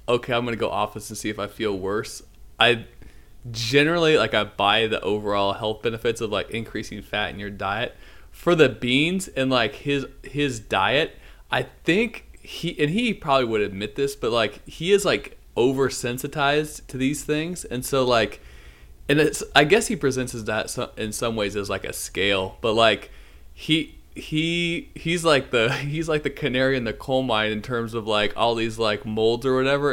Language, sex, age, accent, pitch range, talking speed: English, male, 20-39, American, 100-135 Hz, 190 wpm